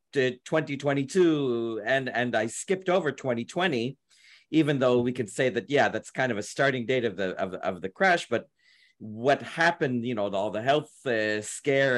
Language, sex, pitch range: Hebrew, male, 105-140 Hz